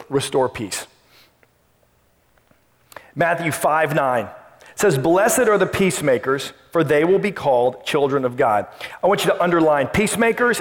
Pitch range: 155-200 Hz